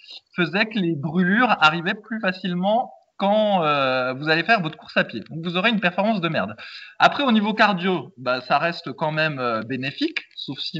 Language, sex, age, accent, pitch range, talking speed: French, male, 20-39, French, 140-200 Hz, 200 wpm